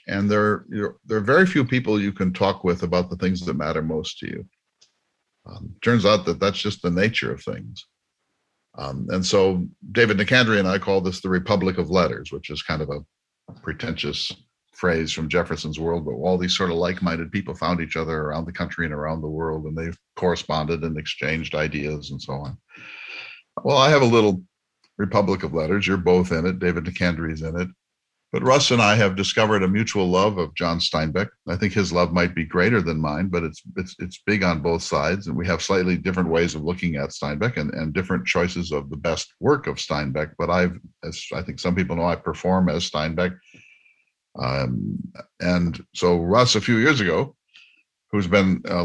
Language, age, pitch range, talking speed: English, 50-69, 80-100 Hz, 205 wpm